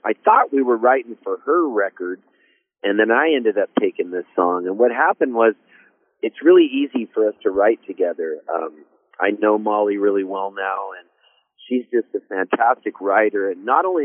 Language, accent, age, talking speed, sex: English, American, 40-59, 190 wpm, male